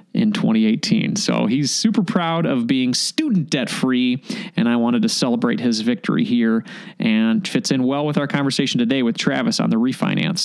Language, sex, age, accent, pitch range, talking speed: English, male, 30-49, American, 190-230 Hz, 185 wpm